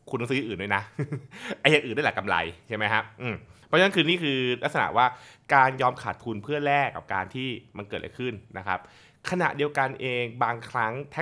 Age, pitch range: 20-39, 105-140 Hz